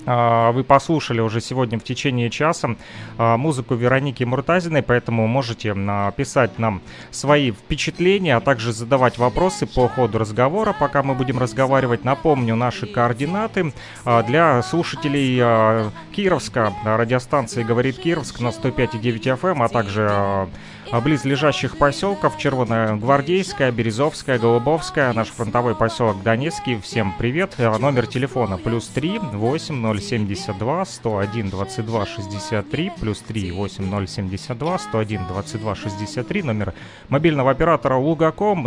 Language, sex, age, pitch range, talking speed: Russian, male, 30-49, 115-150 Hz, 110 wpm